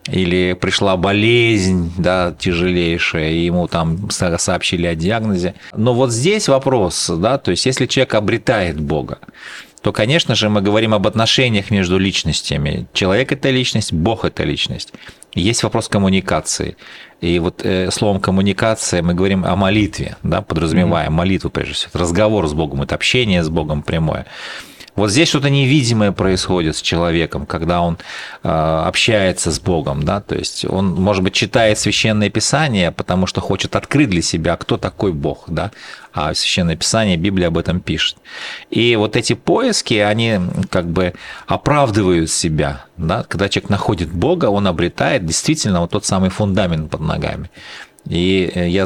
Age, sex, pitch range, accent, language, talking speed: 40-59, male, 85-110 Hz, native, Russian, 155 wpm